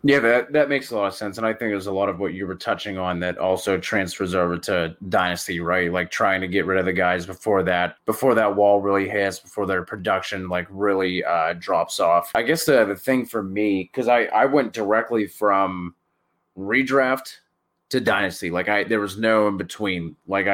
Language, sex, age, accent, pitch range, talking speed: English, male, 20-39, American, 95-110 Hz, 215 wpm